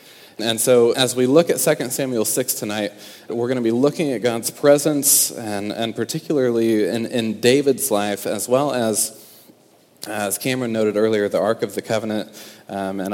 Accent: American